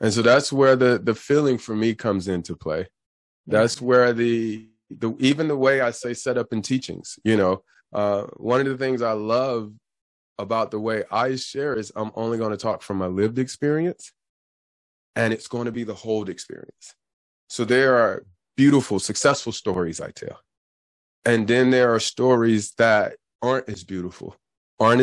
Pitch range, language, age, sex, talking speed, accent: 100-125 Hz, English, 30-49, male, 180 wpm, American